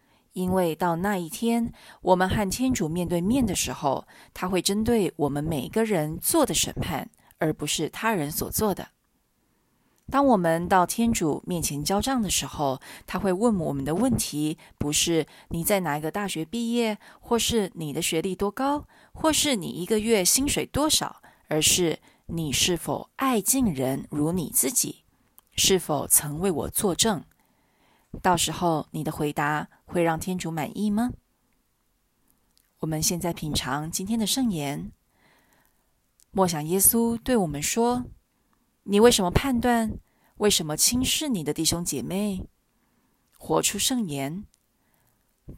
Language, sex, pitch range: Chinese, female, 155-225 Hz